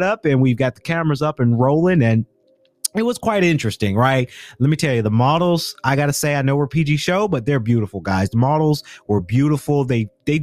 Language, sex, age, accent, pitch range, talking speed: English, male, 30-49, American, 120-150 Hz, 225 wpm